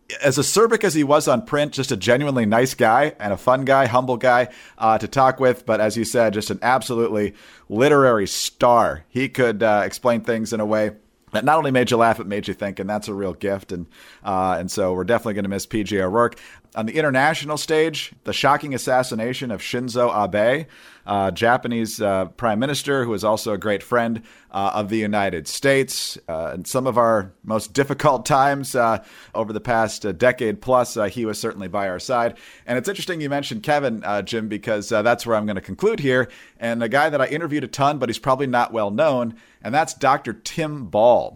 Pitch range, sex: 105-135 Hz, male